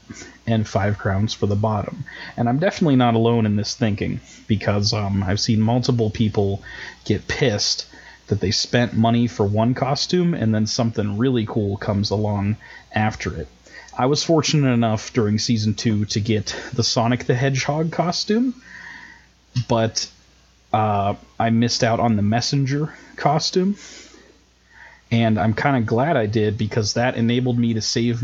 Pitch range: 105-130 Hz